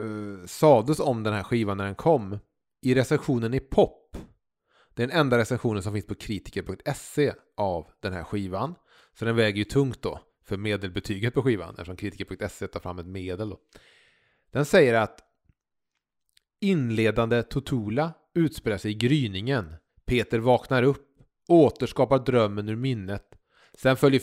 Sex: male